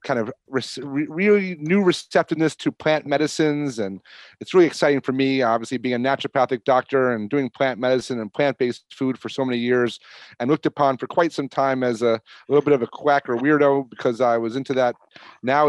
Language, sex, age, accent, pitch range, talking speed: English, male, 30-49, American, 130-155 Hz, 210 wpm